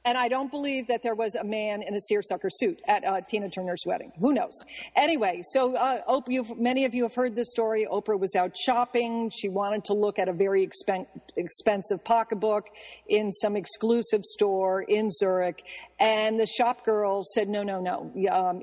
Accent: American